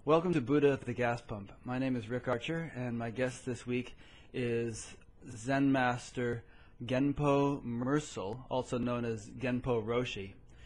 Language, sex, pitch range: English, male, 115-130 Hz